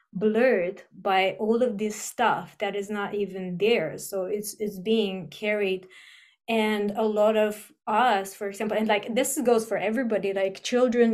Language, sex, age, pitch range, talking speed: English, female, 20-39, 195-220 Hz, 165 wpm